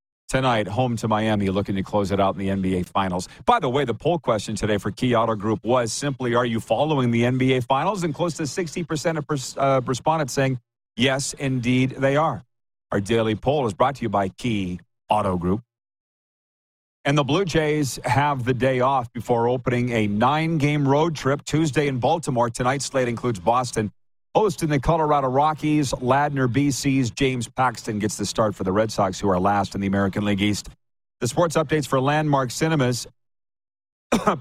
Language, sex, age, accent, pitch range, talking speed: English, male, 40-59, American, 110-150 Hz, 185 wpm